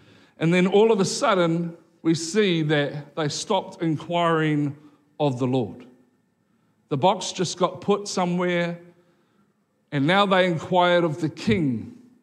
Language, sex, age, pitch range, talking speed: English, male, 50-69, 155-200 Hz, 135 wpm